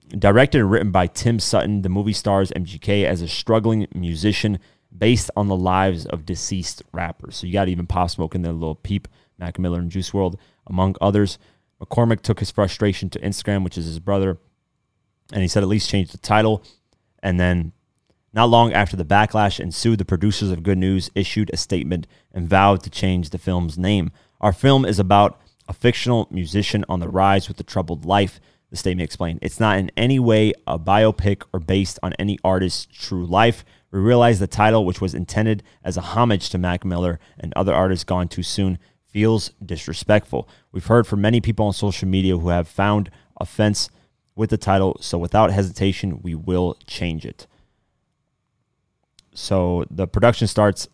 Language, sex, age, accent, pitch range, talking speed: English, male, 30-49, American, 90-105 Hz, 185 wpm